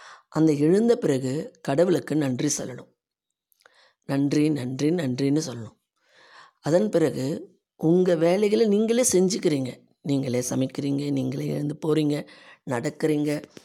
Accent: native